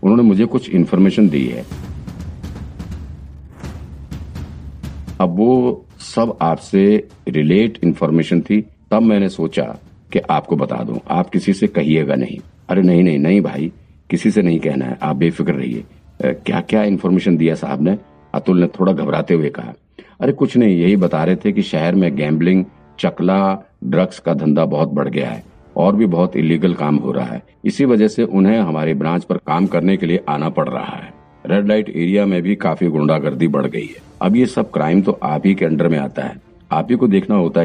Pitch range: 75-95 Hz